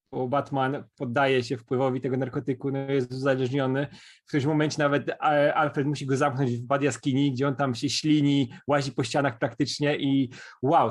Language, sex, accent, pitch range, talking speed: Polish, male, native, 135-165 Hz, 175 wpm